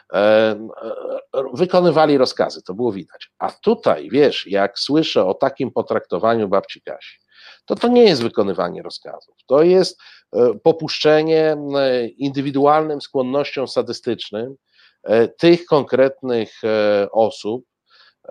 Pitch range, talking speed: 105-140 Hz, 100 wpm